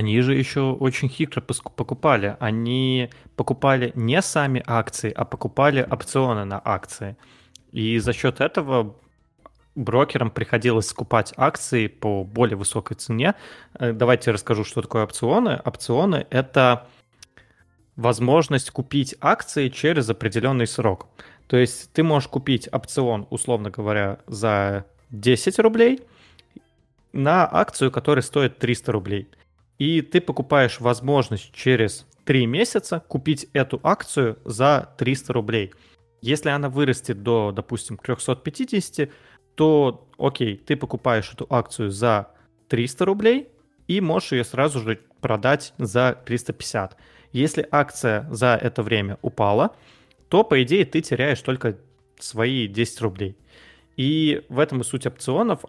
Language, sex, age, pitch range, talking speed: Russian, male, 20-39, 115-140 Hz, 125 wpm